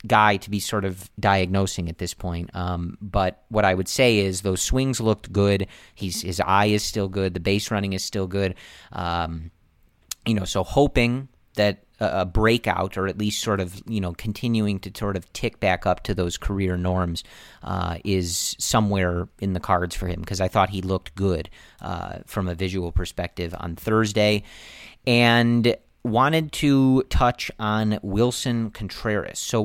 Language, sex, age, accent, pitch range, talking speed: English, male, 40-59, American, 90-110 Hz, 180 wpm